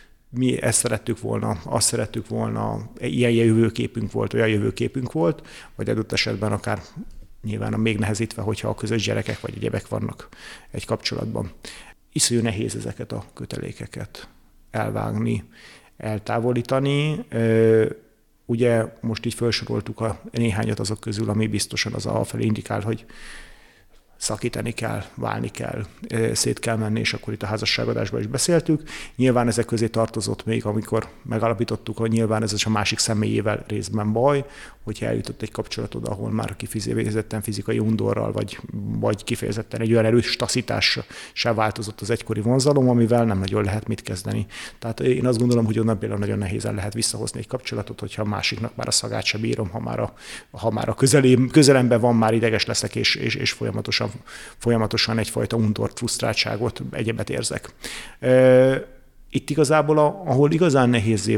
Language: Hungarian